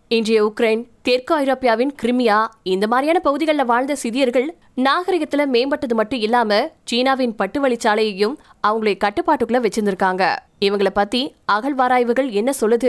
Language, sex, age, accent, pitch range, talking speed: Tamil, female, 20-39, native, 215-265 Hz, 110 wpm